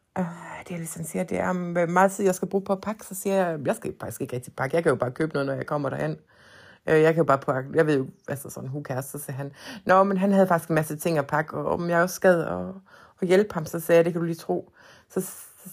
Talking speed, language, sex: 295 wpm, Danish, female